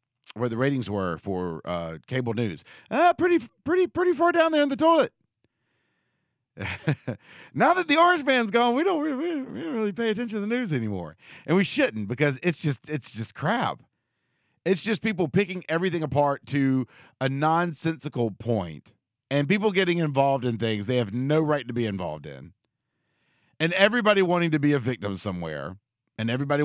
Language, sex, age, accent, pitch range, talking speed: English, male, 40-59, American, 115-175 Hz, 180 wpm